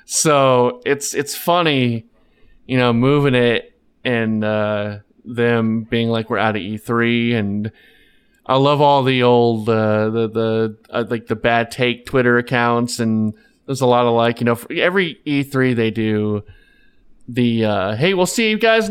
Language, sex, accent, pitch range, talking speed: English, male, American, 115-145 Hz, 170 wpm